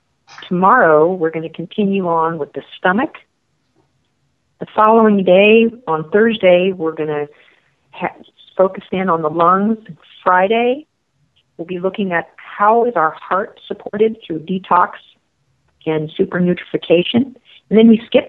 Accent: American